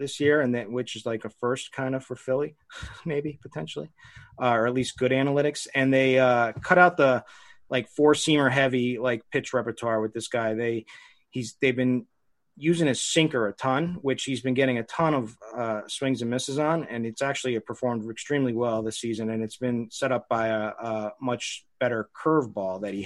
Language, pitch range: English, 110-130 Hz